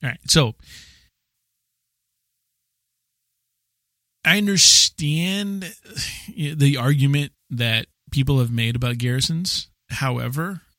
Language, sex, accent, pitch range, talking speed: English, male, American, 125-165 Hz, 80 wpm